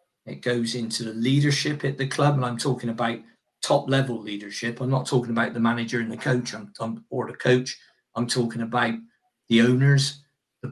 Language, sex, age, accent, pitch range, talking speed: English, male, 50-69, British, 125-140 Hz, 185 wpm